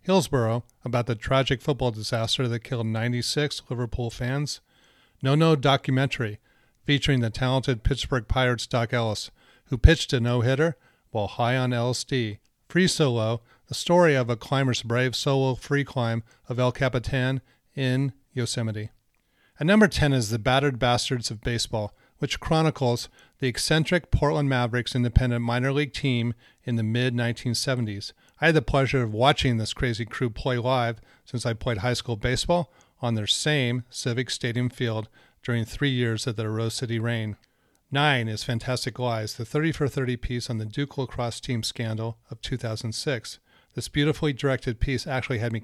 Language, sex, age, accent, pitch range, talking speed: English, male, 40-59, American, 115-135 Hz, 160 wpm